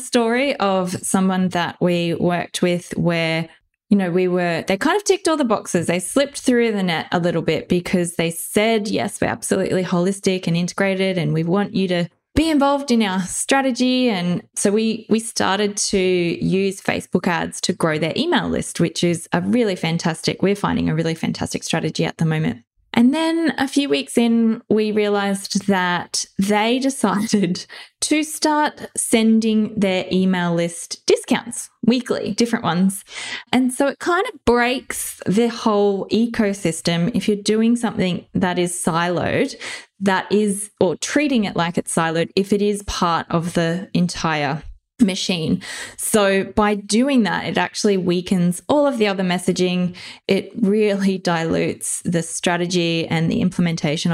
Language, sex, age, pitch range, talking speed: English, female, 20-39, 175-225 Hz, 165 wpm